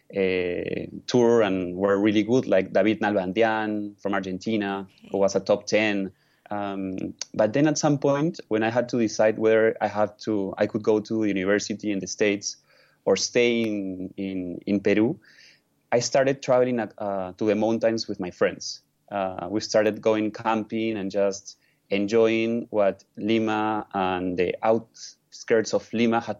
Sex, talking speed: male, 165 wpm